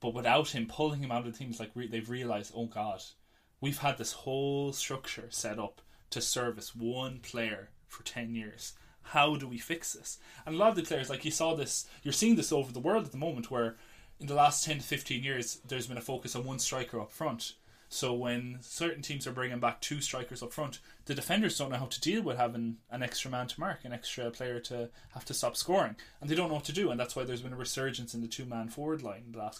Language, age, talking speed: English, 20-39, 255 wpm